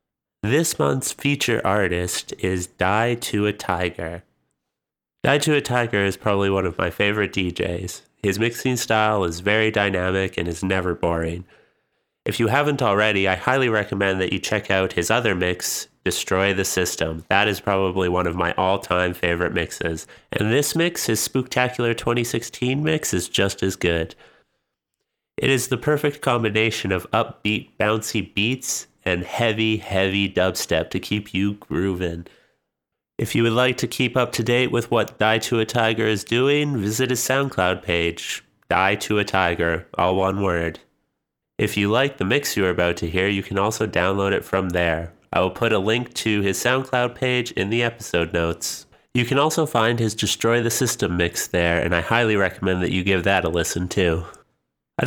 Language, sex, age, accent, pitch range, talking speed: English, male, 30-49, American, 90-120 Hz, 180 wpm